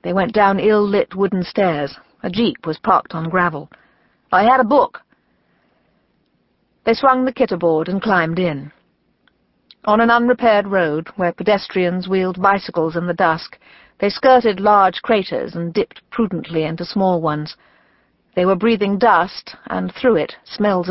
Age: 50-69